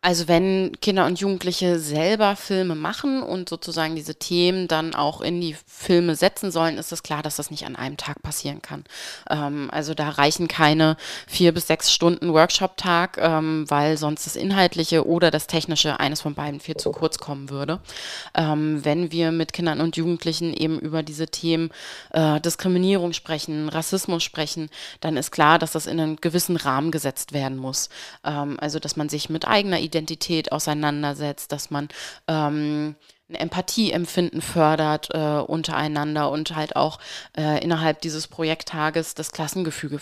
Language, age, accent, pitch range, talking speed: German, 20-39, German, 150-170 Hz, 165 wpm